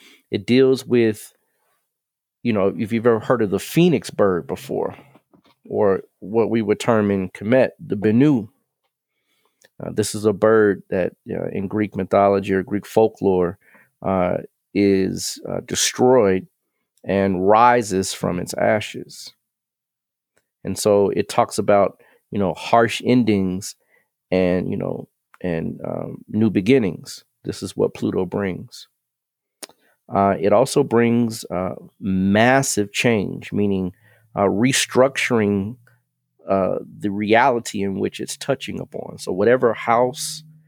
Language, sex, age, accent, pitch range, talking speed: English, male, 40-59, American, 100-120 Hz, 130 wpm